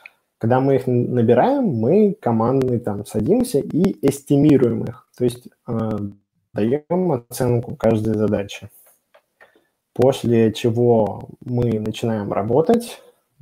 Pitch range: 110-125 Hz